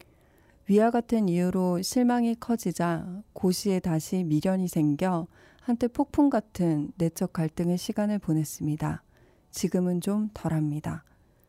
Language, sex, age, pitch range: Korean, female, 40-59, 165-215 Hz